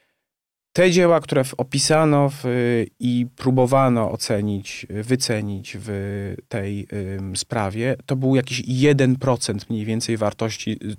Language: Polish